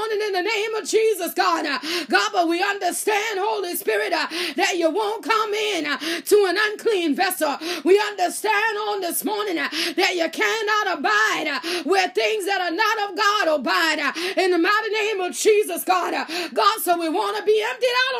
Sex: female